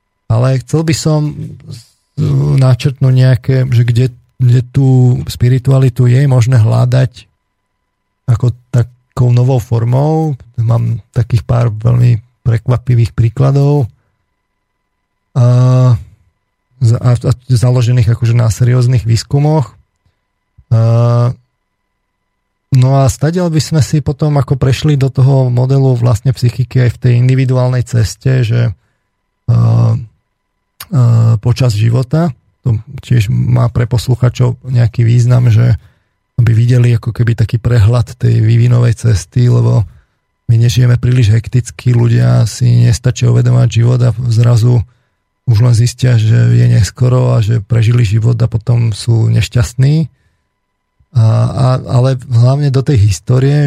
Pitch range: 115-130 Hz